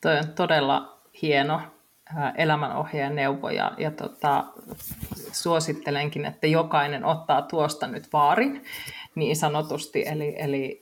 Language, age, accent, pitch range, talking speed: Finnish, 30-49, native, 150-175 Hz, 110 wpm